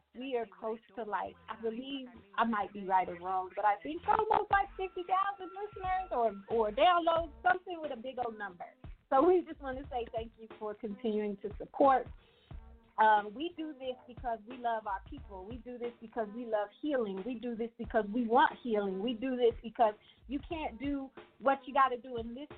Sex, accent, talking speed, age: female, American, 205 wpm, 30-49